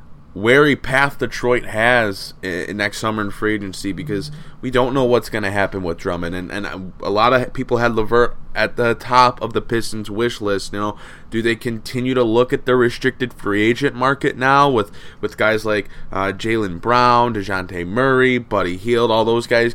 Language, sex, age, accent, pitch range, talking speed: English, male, 20-39, American, 100-125 Hz, 195 wpm